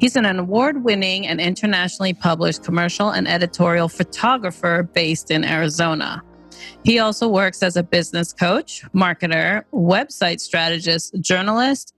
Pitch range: 170-210 Hz